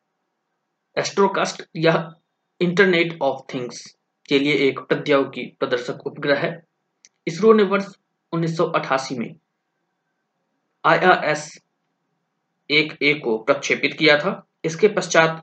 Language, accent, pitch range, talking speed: Hindi, native, 135-180 Hz, 55 wpm